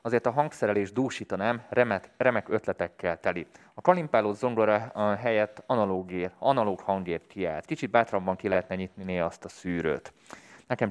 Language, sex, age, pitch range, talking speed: Hungarian, male, 20-39, 95-120 Hz, 145 wpm